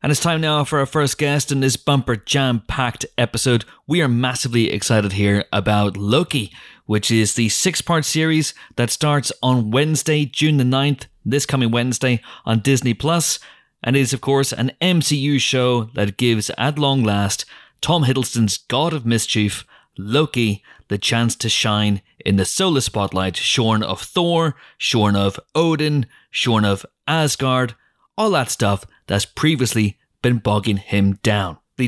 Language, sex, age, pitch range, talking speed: English, male, 30-49, 105-145 Hz, 155 wpm